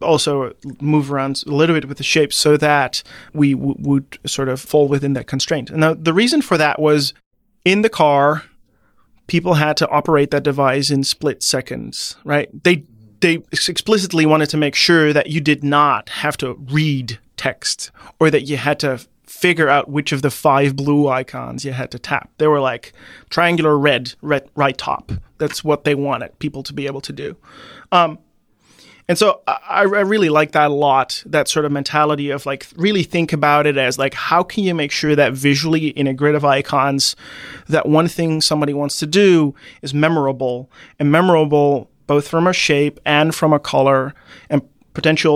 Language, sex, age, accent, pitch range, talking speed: English, male, 30-49, American, 140-160 Hz, 190 wpm